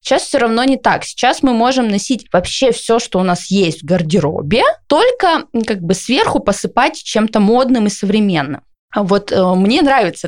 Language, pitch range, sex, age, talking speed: Russian, 200-260 Hz, female, 20-39, 175 wpm